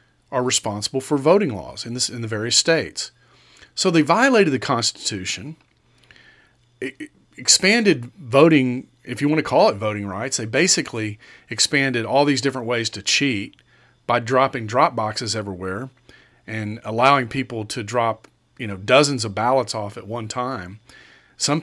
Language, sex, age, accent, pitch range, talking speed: English, male, 40-59, American, 115-145 Hz, 155 wpm